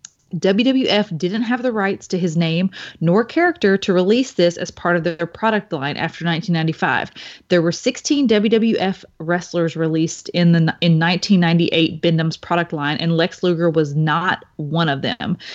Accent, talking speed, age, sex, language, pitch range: American, 160 wpm, 30-49, female, English, 165-200 Hz